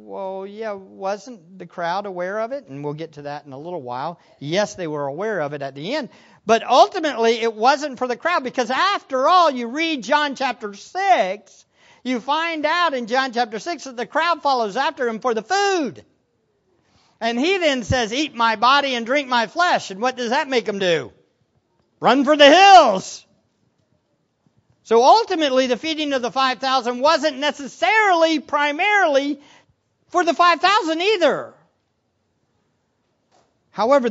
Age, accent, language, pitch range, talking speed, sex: 50-69, American, English, 190-290 Hz, 165 wpm, male